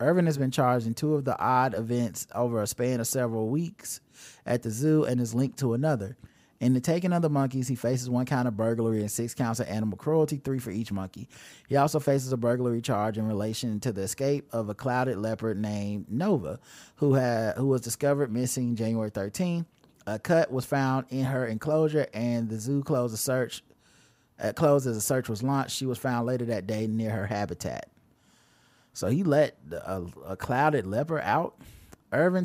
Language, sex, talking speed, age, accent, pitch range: English, male, 200 wpm, 30-49, American, 115-135 Hz